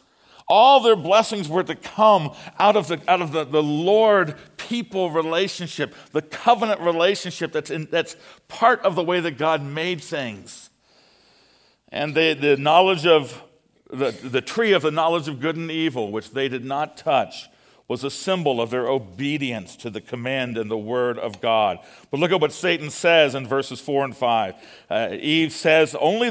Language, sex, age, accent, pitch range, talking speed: English, male, 50-69, American, 135-190 Hz, 180 wpm